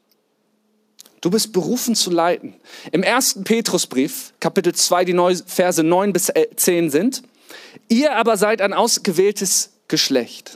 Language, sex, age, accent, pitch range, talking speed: German, male, 40-59, German, 175-230 Hz, 130 wpm